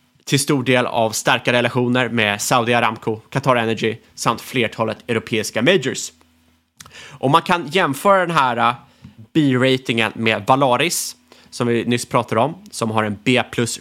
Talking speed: 145 wpm